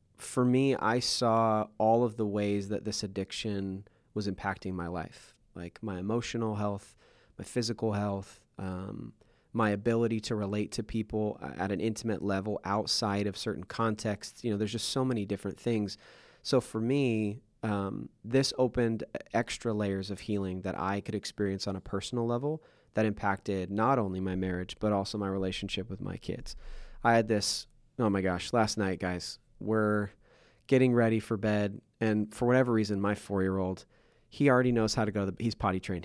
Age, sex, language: 30-49, male, English